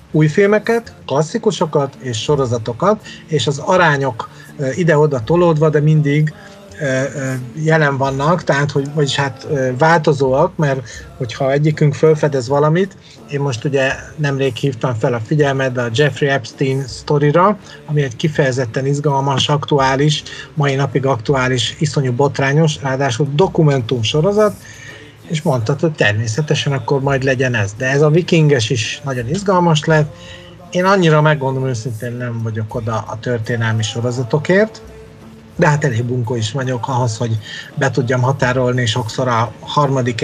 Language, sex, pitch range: Hungarian, male, 130-155 Hz